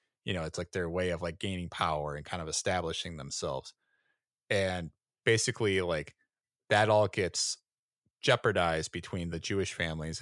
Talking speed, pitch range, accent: 155 wpm, 85-110 Hz, American